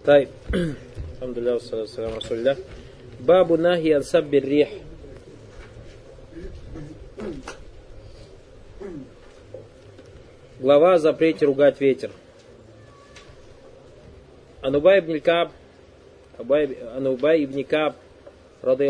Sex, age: male, 30-49